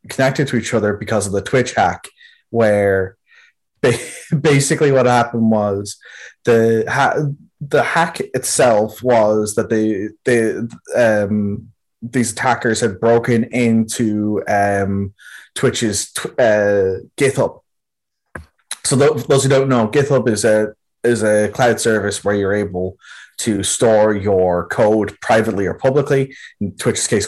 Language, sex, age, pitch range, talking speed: English, male, 20-39, 105-125 Hz, 130 wpm